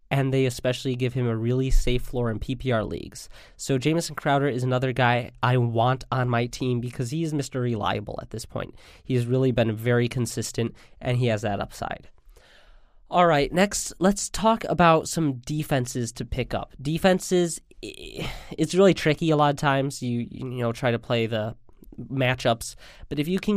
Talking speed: 180 wpm